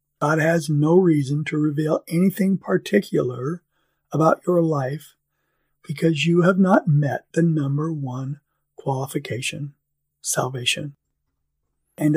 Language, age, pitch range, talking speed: English, 50-69, 140-165 Hz, 110 wpm